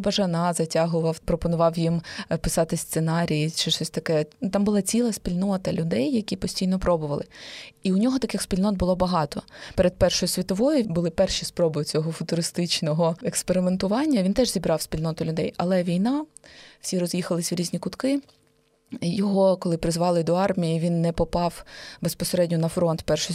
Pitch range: 170-195 Hz